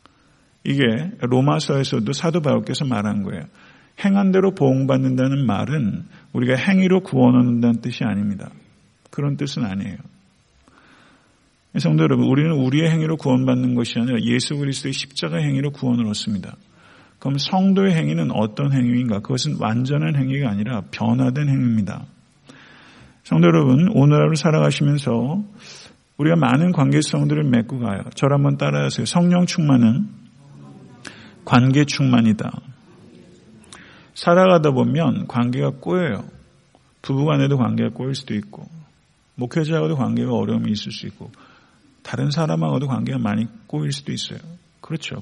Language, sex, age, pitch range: Korean, male, 50-69, 120-155 Hz